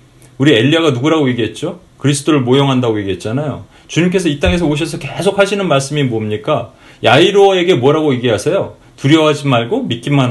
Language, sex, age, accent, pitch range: Korean, male, 40-59, native, 125-175 Hz